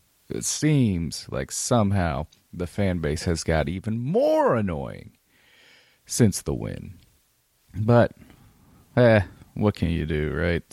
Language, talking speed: English, 125 wpm